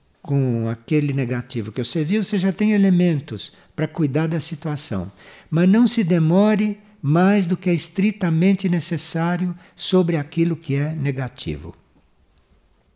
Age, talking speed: 60-79, 135 wpm